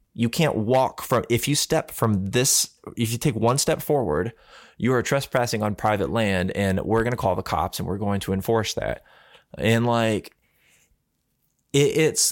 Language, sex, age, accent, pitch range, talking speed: English, male, 20-39, American, 95-120 Hz, 180 wpm